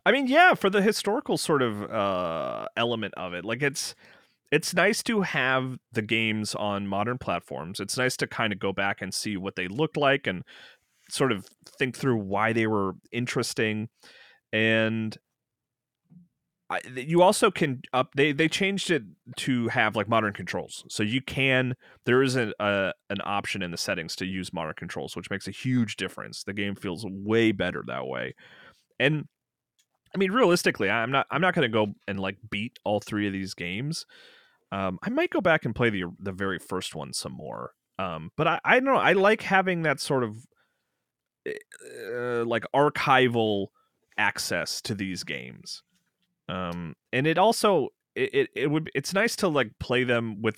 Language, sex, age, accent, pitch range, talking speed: English, male, 30-49, American, 100-155 Hz, 185 wpm